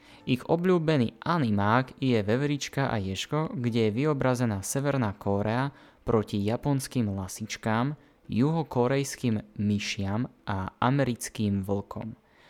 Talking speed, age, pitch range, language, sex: 95 wpm, 20-39, 105-130 Hz, Slovak, male